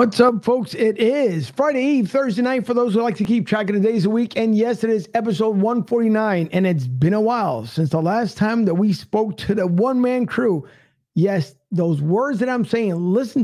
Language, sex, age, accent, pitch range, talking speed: English, male, 50-69, American, 190-240 Hz, 230 wpm